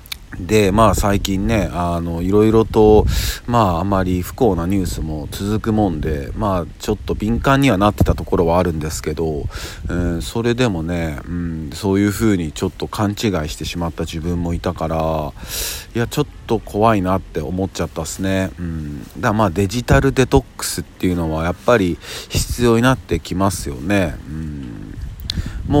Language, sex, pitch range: Japanese, male, 85-110 Hz